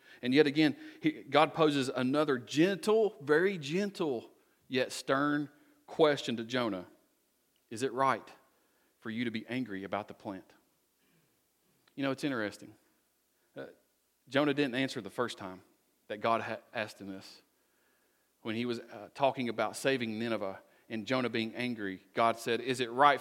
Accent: American